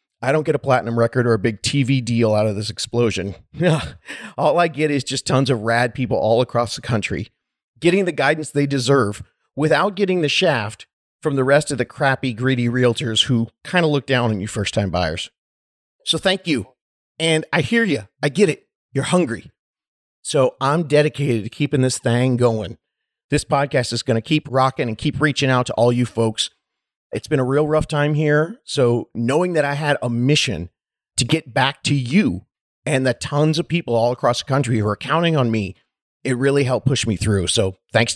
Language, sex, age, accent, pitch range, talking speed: English, male, 40-59, American, 115-150 Hz, 205 wpm